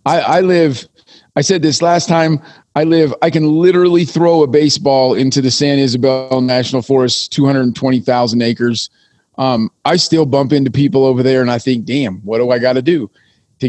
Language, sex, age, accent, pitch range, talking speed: English, male, 40-59, American, 130-160 Hz, 190 wpm